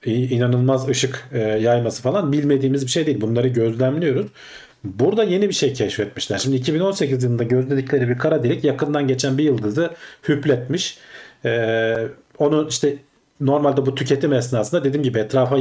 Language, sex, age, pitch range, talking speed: Turkish, male, 40-59, 115-145 Hz, 145 wpm